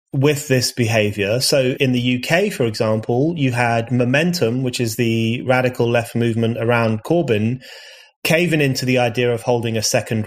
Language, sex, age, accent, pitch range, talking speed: English, male, 30-49, British, 115-140 Hz, 165 wpm